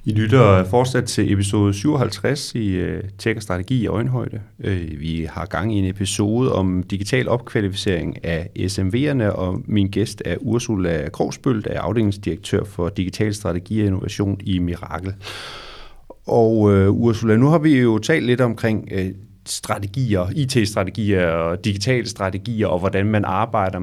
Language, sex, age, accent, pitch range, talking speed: Danish, male, 30-49, native, 95-115 Hz, 150 wpm